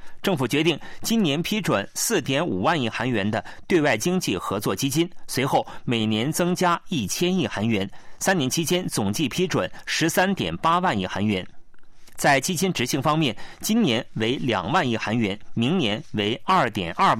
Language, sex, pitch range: Chinese, male, 110-180 Hz